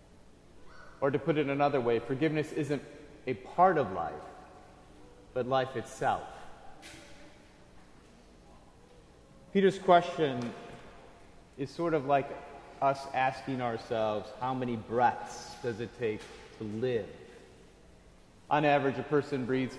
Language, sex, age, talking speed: English, male, 30-49, 110 wpm